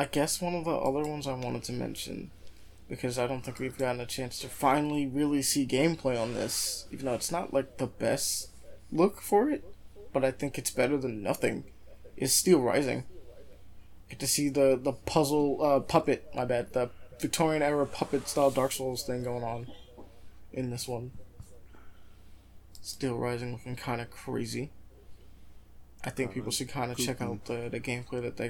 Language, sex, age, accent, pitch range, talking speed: English, male, 20-39, American, 110-145 Hz, 185 wpm